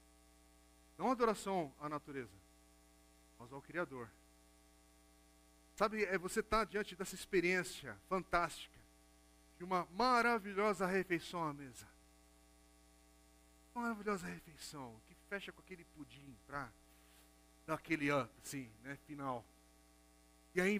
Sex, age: male, 40-59